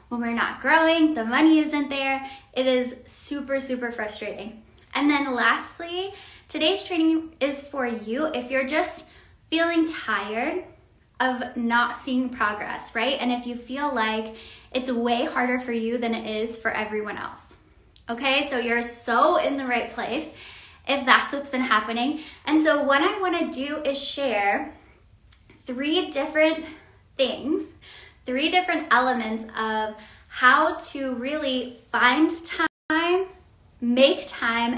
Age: 20-39